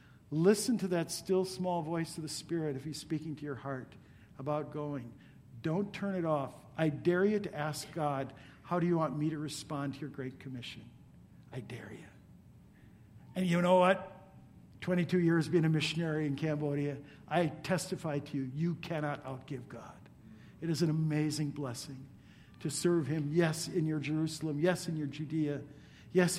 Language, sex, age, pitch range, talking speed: English, male, 50-69, 140-170 Hz, 175 wpm